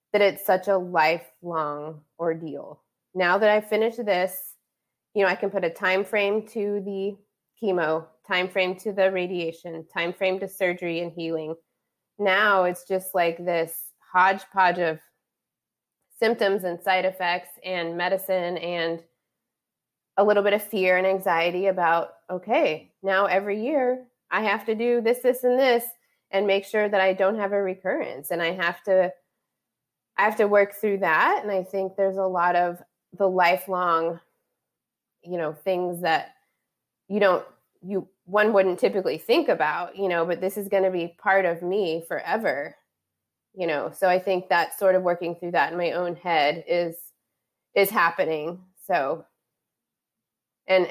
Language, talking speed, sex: English, 165 wpm, female